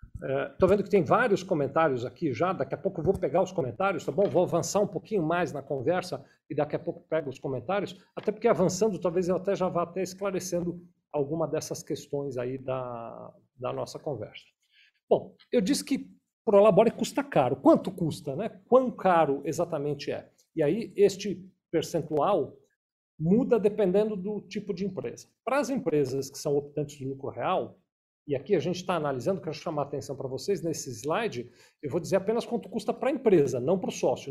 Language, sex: Portuguese, male